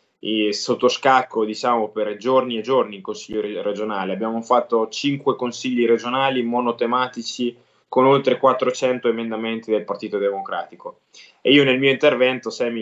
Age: 20-39